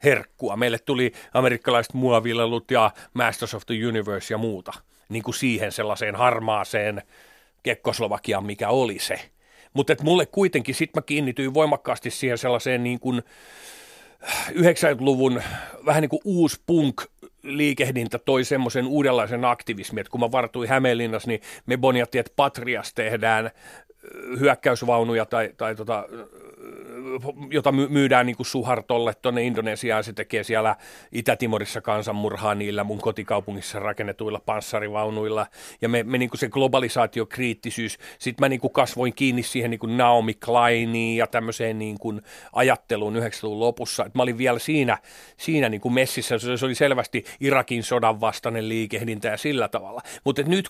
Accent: native